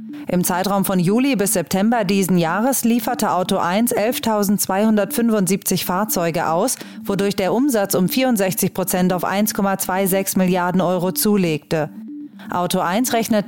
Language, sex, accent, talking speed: German, female, German, 125 wpm